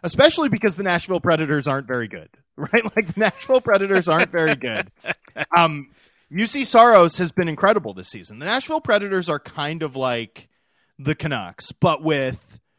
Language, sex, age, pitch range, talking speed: English, male, 30-49, 125-165 Hz, 165 wpm